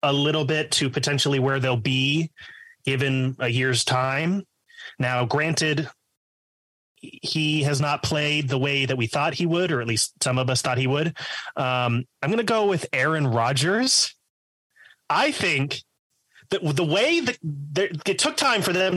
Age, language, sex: 30-49, English, male